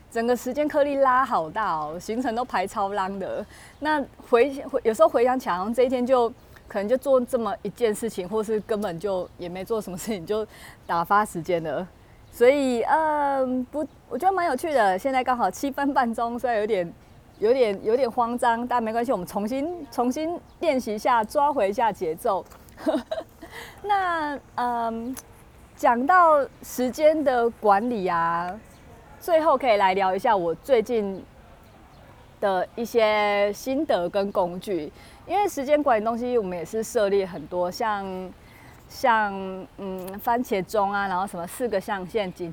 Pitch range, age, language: 195-260 Hz, 30-49, Chinese